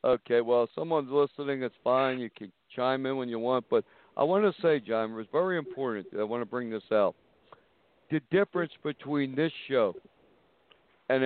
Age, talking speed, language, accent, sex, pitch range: 60-79, 190 wpm, English, American, male, 120-140 Hz